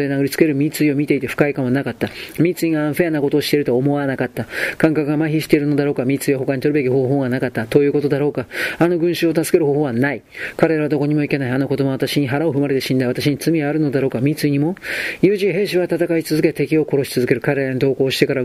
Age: 40-59